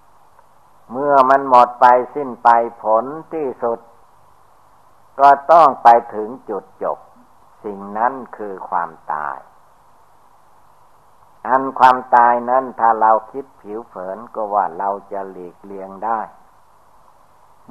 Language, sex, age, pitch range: Thai, male, 60-79, 100-130 Hz